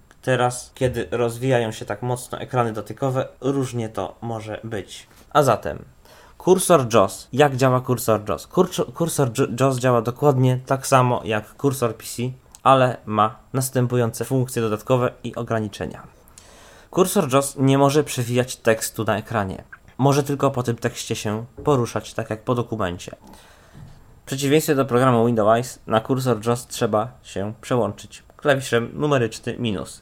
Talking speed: 140 wpm